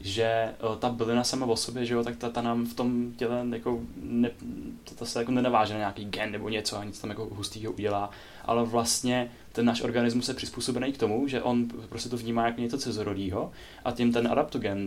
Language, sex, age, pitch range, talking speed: Czech, male, 10-29, 105-120 Hz, 210 wpm